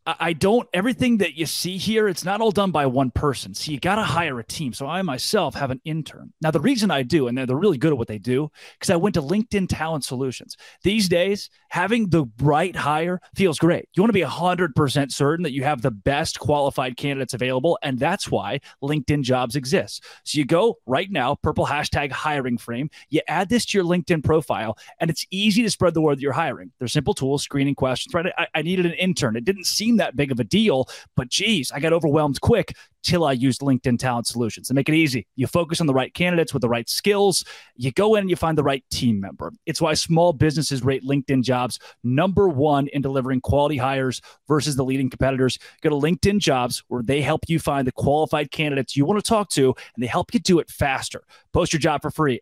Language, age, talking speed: English, 30-49, 230 wpm